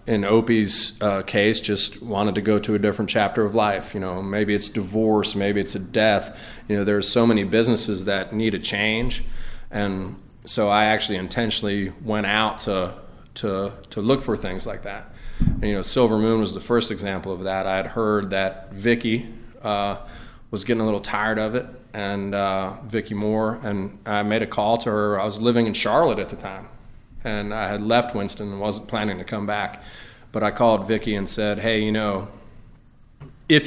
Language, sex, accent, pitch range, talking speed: English, male, American, 100-115 Hz, 200 wpm